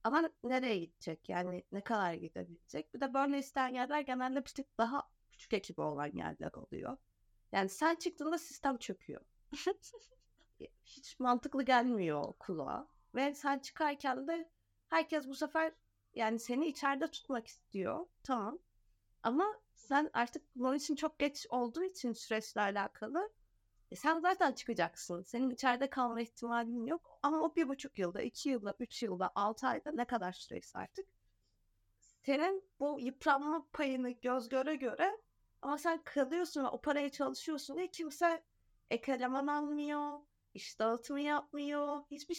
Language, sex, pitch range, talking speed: Turkish, female, 220-300 Hz, 140 wpm